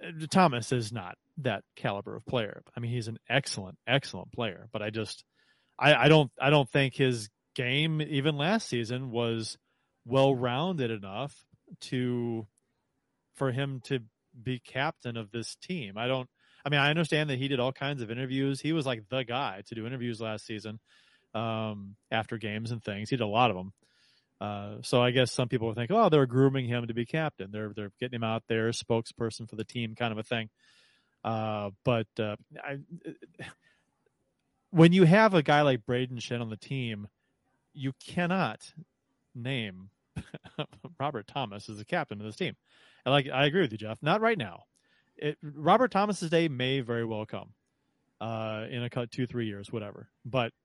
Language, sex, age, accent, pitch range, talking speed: English, male, 30-49, American, 110-140 Hz, 185 wpm